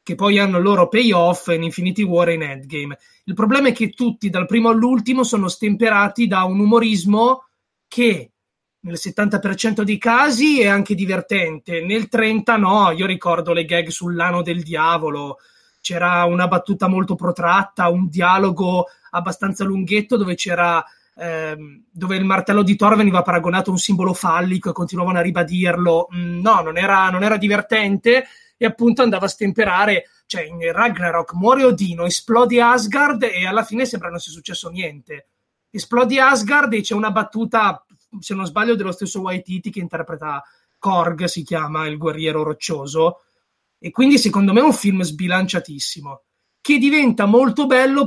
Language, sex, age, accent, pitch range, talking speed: Italian, male, 20-39, native, 175-220 Hz, 160 wpm